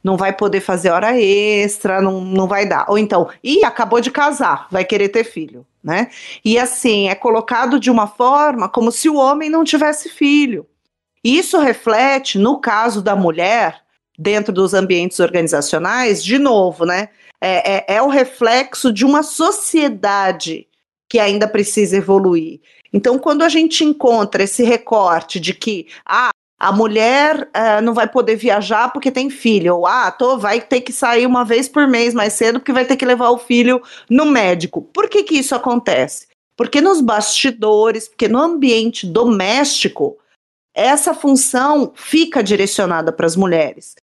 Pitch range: 200-270 Hz